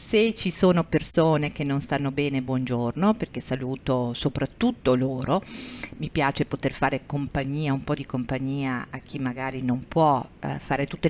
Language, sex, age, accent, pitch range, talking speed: Italian, female, 50-69, native, 145-195 Hz, 155 wpm